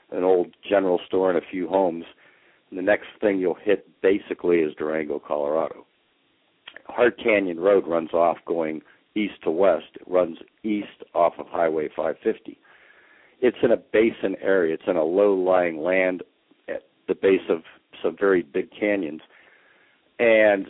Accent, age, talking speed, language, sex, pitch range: American, 60-79, 150 wpm, English, male, 85-110 Hz